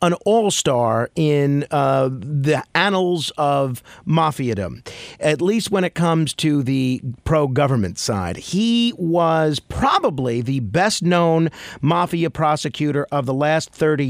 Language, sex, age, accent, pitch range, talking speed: English, male, 50-69, American, 130-175 Hz, 120 wpm